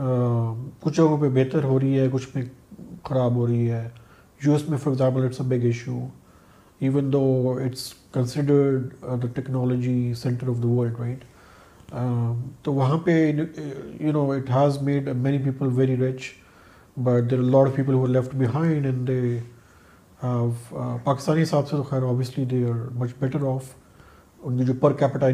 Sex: male